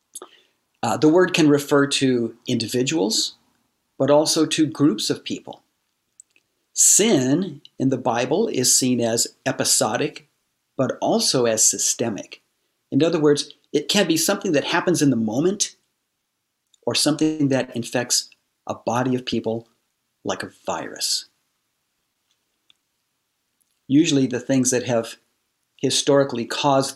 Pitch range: 120-150 Hz